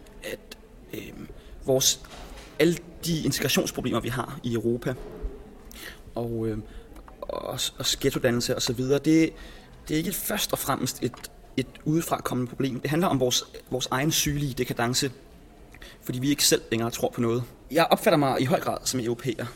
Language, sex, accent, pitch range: Danish, male, native, 120-145 Hz